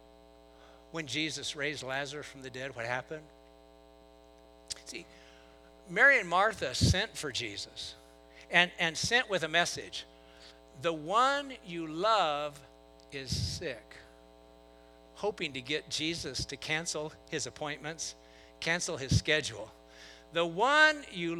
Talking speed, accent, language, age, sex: 120 wpm, American, English, 60-79, male